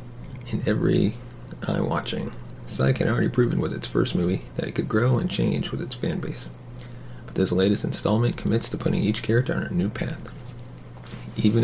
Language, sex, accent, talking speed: English, male, American, 185 wpm